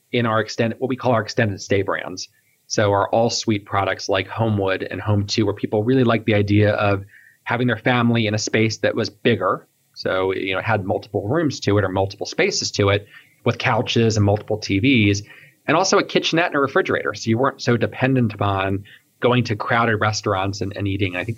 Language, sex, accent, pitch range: English, male, American, 105-125 Hz